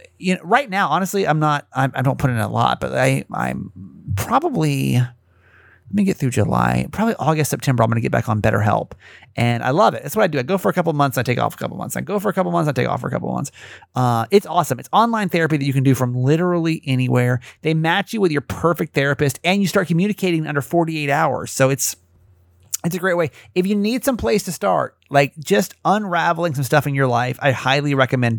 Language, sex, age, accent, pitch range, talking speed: English, male, 30-49, American, 120-175 Hz, 255 wpm